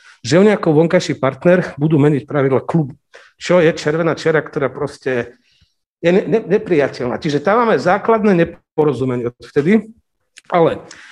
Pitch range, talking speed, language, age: 145-180 Hz, 140 wpm, Slovak, 50-69